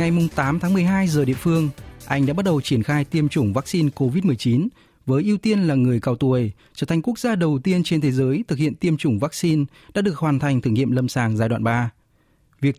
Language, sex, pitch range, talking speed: Vietnamese, male, 120-160 Hz, 235 wpm